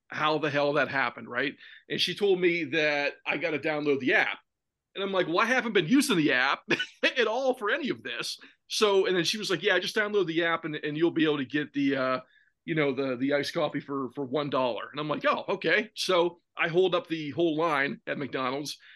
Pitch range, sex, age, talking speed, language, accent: 145-210 Hz, male, 30-49, 240 wpm, English, American